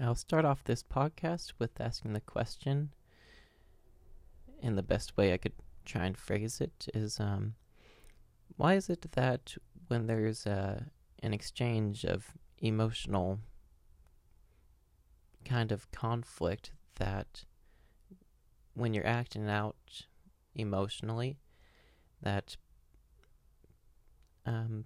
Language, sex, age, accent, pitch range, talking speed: English, male, 20-39, American, 85-115 Hz, 105 wpm